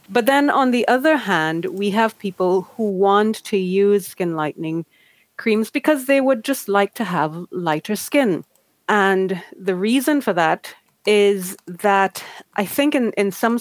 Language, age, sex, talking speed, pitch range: Finnish, 30-49, female, 160 wpm, 165-205 Hz